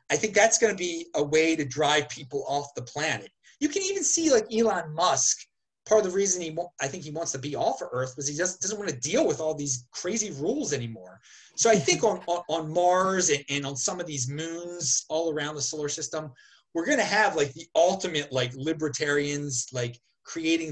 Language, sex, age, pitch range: English, male, 30-49, 145-220 Hz